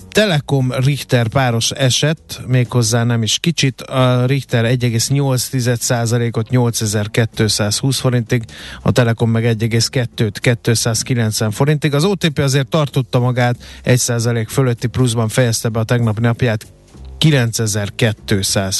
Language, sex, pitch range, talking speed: Hungarian, male, 115-135 Hz, 105 wpm